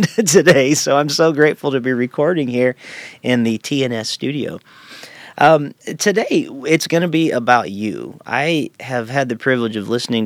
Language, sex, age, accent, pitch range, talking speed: English, male, 40-59, American, 105-130 Hz, 165 wpm